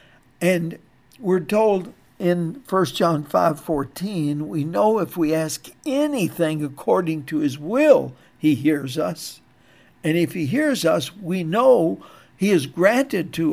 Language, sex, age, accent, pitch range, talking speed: English, male, 60-79, American, 145-175 Hz, 135 wpm